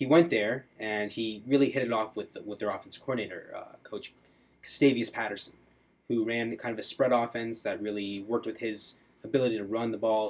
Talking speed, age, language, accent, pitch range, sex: 205 wpm, 20-39, English, American, 100-120 Hz, male